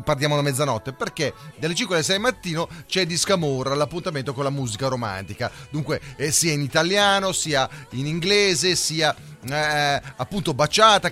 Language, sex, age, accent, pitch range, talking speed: Italian, male, 30-49, native, 140-195 Hz, 155 wpm